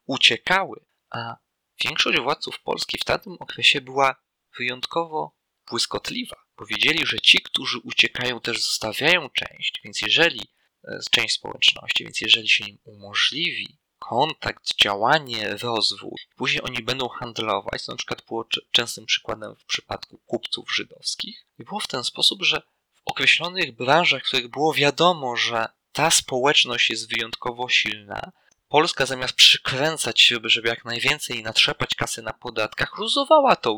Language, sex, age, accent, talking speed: Polish, male, 20-39, native, 140 wpm